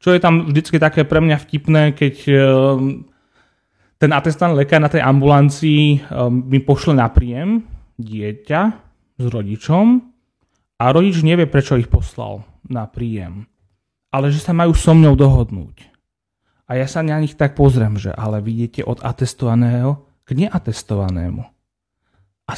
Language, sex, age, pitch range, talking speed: Slovak, male, 30-49, 120-150 Hz, 140 wpm